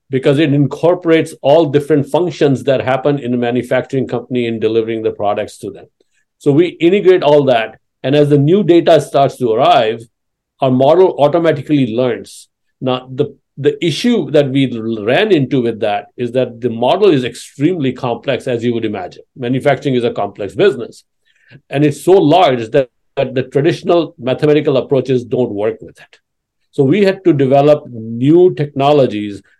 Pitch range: 125-150 Hz